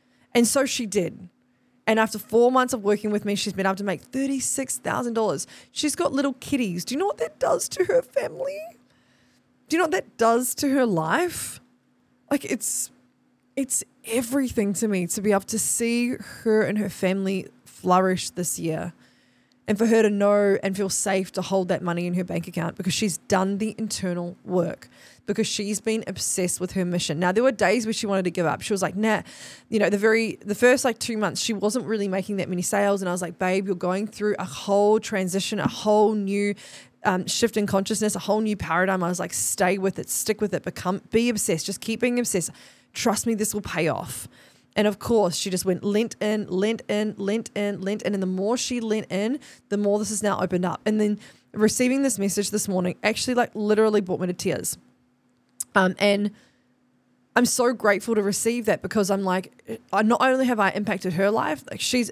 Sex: female